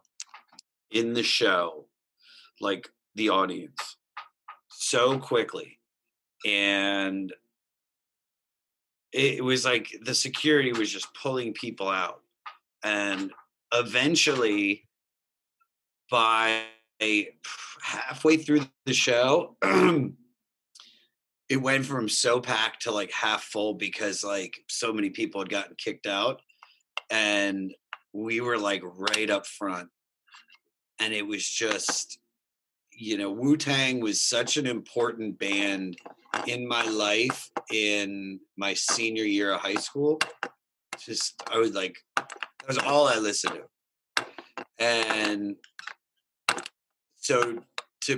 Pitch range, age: 105-135 Hz, 40-59